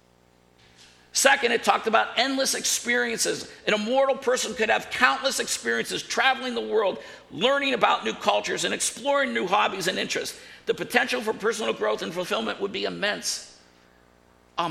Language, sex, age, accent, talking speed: English, male, 50-69, American, 150 wpm